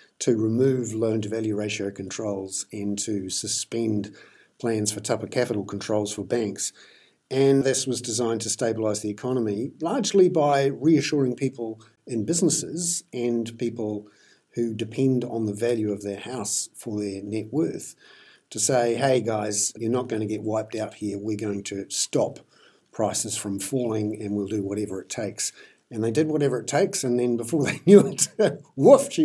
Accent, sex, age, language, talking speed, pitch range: Australian, male, 50-69, English, 170 wpm, 105-125 Hz